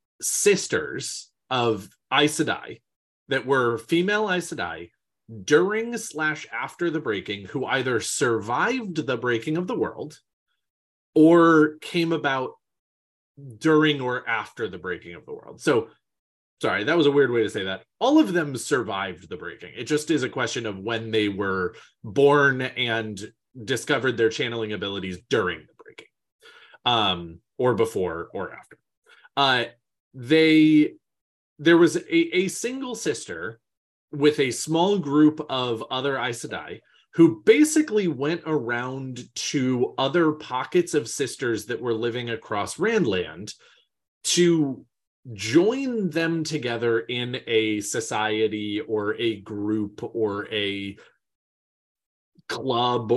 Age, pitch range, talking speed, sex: 30-49, 110-160 Hz, 130 wpm, male